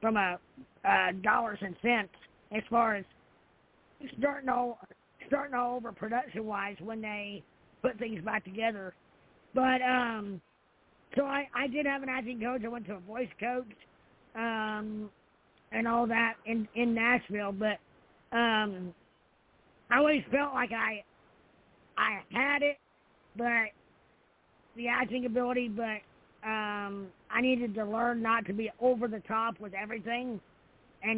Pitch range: 210-240 Hz